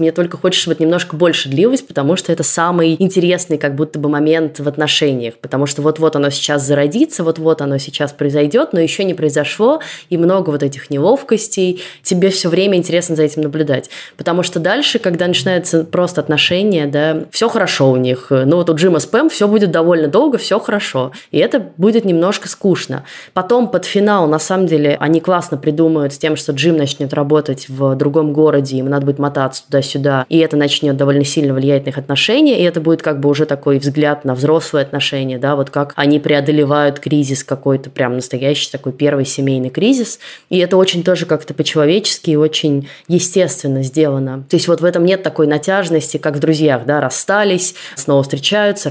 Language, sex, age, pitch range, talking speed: Russian, female, 20-39, 140-180 Hz, 190 wpm